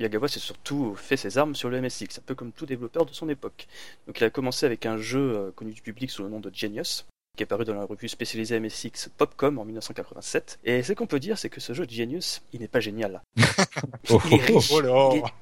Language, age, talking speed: French, 30-49, 240 wpm